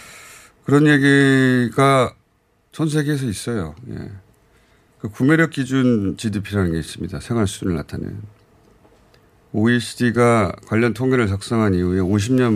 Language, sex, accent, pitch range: Korean, male, native, 95-125 Hz